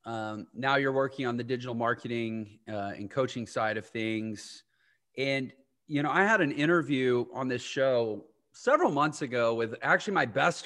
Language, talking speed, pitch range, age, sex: English, 175 wpm, 120-155 Hz, 30-49, male